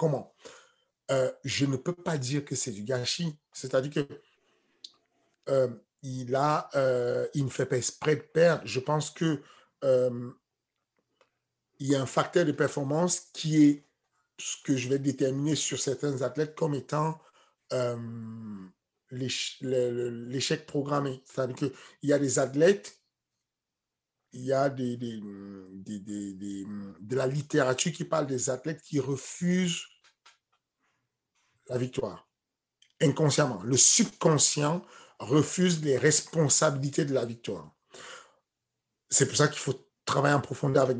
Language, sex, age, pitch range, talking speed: French, male, 50-69, 130-155 Hz, 125 wpm